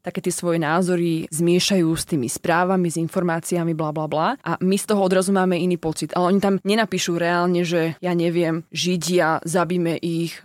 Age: 20-39